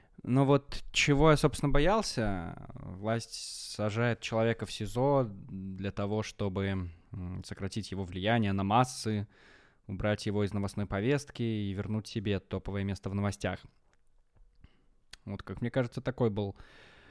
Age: 20-39